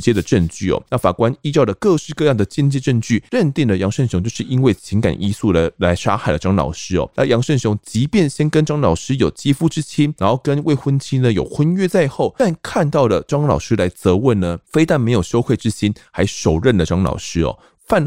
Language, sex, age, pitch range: Chinese, male, 20-39, 95-145 Hz